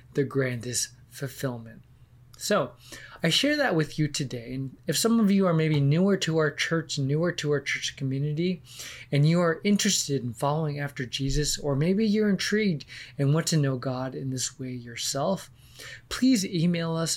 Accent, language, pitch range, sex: American, English, 125-160 Hz, male